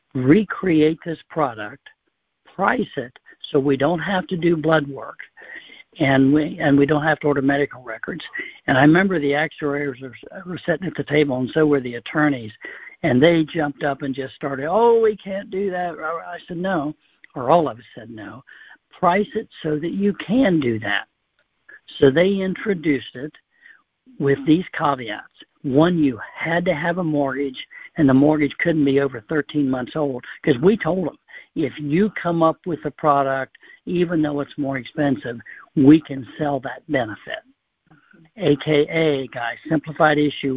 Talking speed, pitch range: 170 wpm, 135-165 Hz